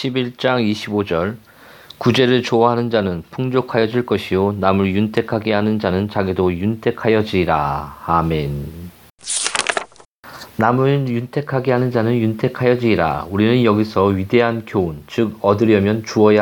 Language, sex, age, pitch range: Korean, male, 40-59, 100-125 Hz